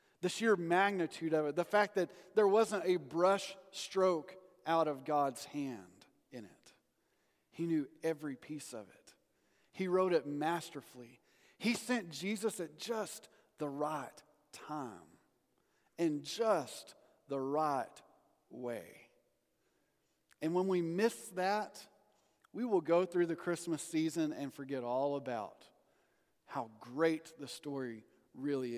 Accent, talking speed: American, 130 wpm